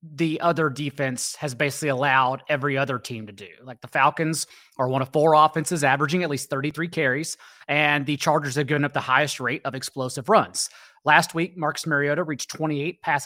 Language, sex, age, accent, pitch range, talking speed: English, male, 30-49, American, 135-165 Hz, 195 wpm